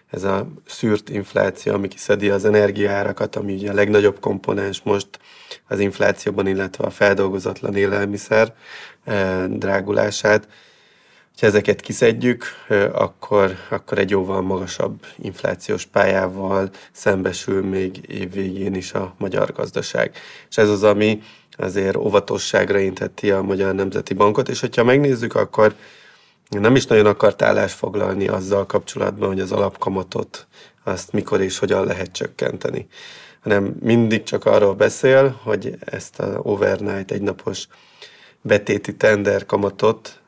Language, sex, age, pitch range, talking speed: Hungarian, male, 30-49, 95-125 Hz, 120 wpm